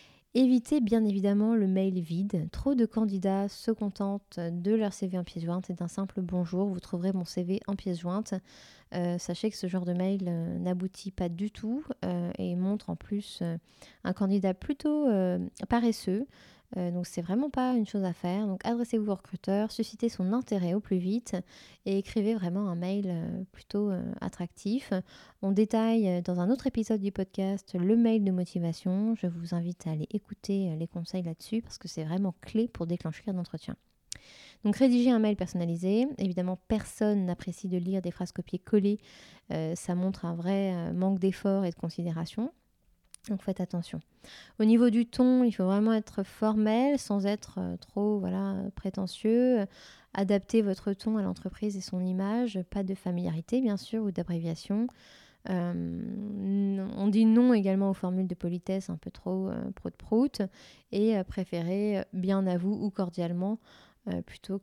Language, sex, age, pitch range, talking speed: French, female, 20-39, 180-215 Hz, 170 wpm